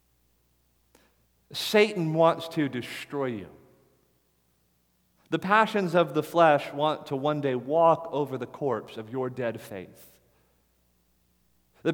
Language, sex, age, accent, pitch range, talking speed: English, male, 40-59, American, 120-170 Hz, 115 wpm